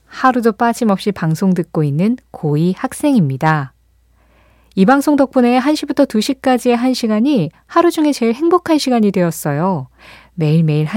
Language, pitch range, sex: Korean, 170-255 Hz, female